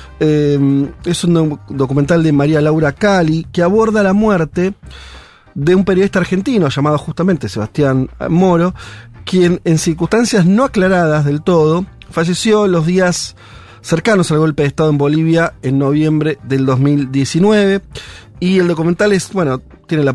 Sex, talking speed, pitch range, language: male, 145 wpm, 130-170 Hz, Spanish